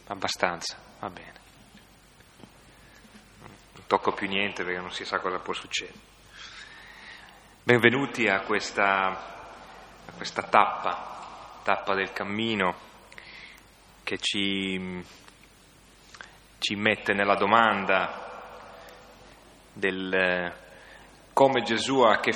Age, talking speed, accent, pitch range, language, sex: 30-49, 95 wpm, native, 95-110 Hz, Italian, male